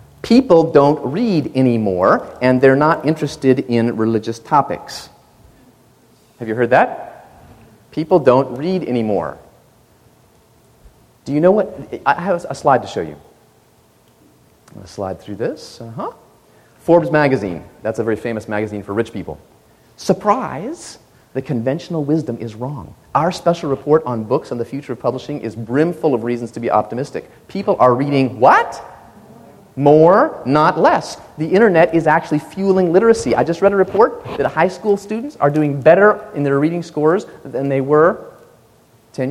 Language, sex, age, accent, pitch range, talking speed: English, male, 30-49, American, 115-155 Hz, 155 wpm